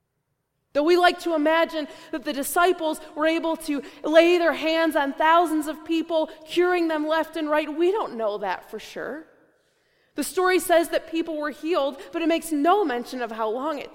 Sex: female